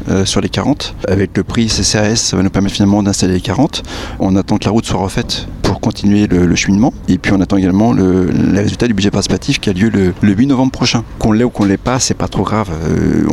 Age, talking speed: 40-59, 260 wpm